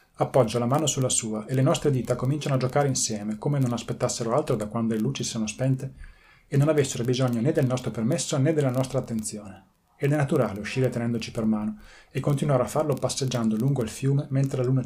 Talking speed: 215 wpm